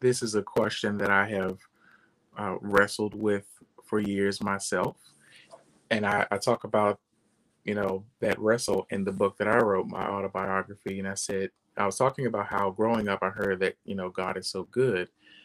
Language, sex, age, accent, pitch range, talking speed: English, male, 30-49, American, 100-120 Hz, 190 wpm